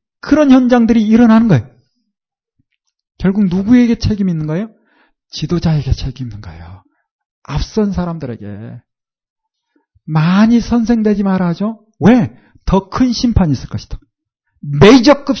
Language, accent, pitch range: Korean, native, 145-240 Hz